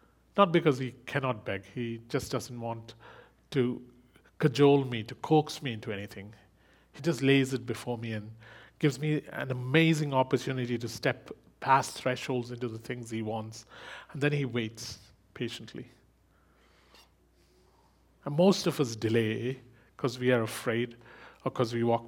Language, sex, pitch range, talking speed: English, male, 110-140 Hz, 150 wpm